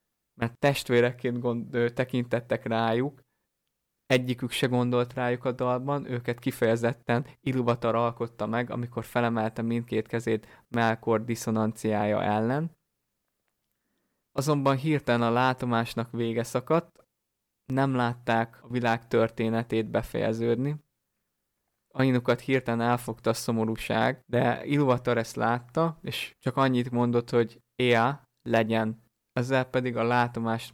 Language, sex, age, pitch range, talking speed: Hungarian, male, 20-39, 115-125 Hz, 105 wpm